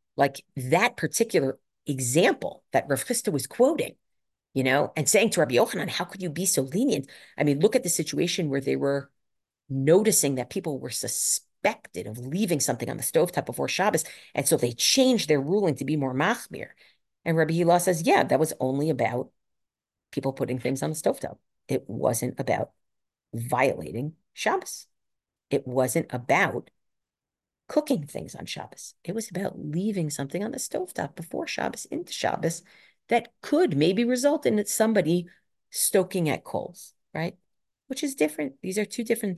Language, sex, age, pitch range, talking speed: English, female, 40-59, 140-215 Hz, 165 wpm